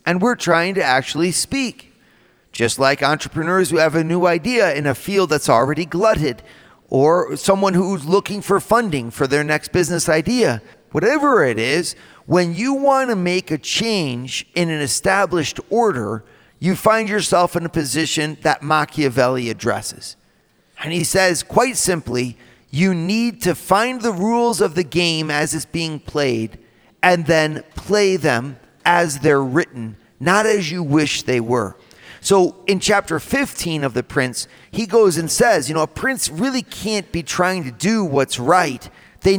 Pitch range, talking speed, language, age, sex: 145-200 Hz, 165 wpm, English, 40-59, male